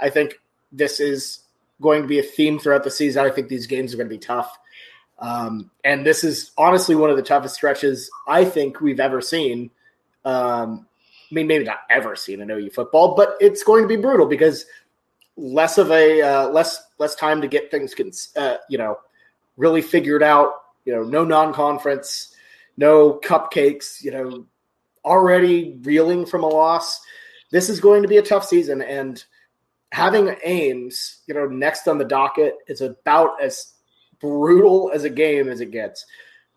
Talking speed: 175 wpm